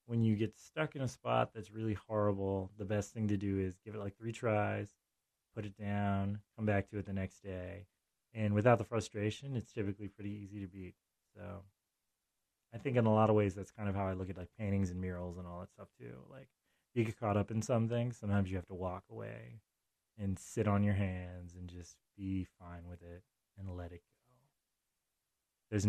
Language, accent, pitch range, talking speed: English, American, 90-110 Hz, 220 wpm